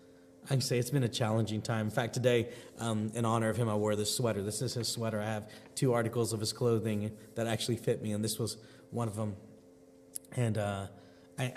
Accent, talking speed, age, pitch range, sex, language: American, 230 wpm, 30-49, 110-140 Hz, male, English